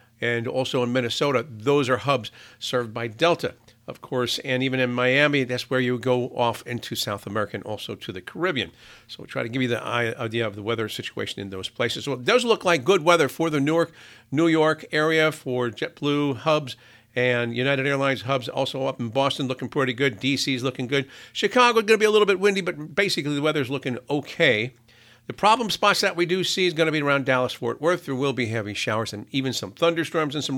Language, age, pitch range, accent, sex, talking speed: English, 50-69, 120-150 Hz, American, male, 230 wpm